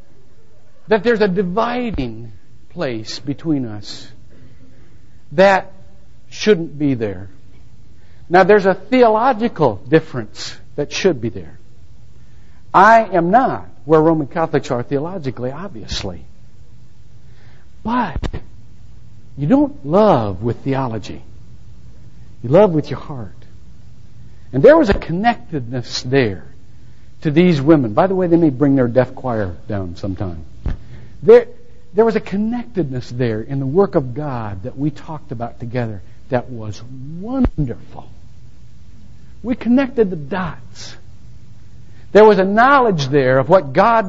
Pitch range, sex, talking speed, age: 115-190 Hz, male, 125 wpm, 60-79